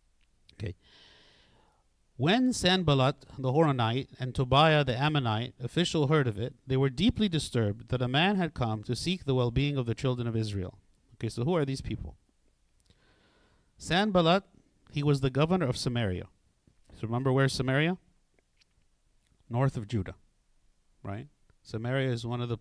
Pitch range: 110-145 Hz